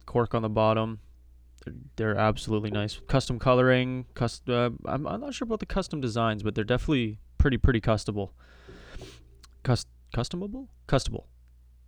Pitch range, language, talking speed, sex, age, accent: 105-130 Hz, English, 145 wpm, male, 20-39, American